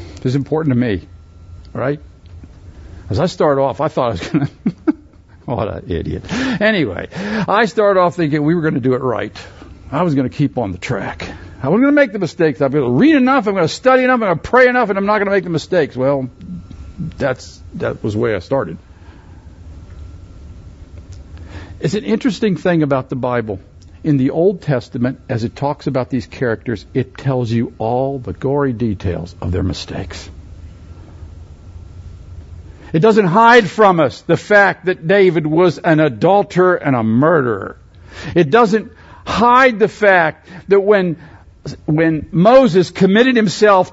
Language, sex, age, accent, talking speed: English, male, 60-79, American, 165 wpm